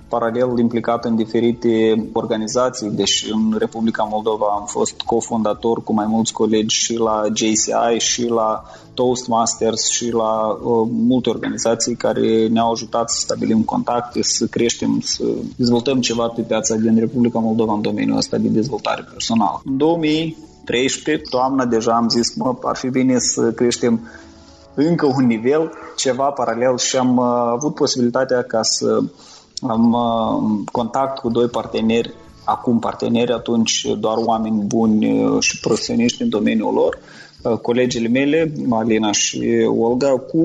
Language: Romanian